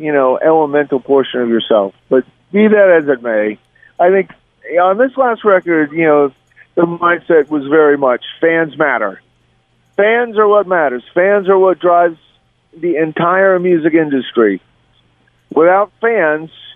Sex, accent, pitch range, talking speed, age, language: male, American, 135-195 Hz, 145 wpm, 50-69, English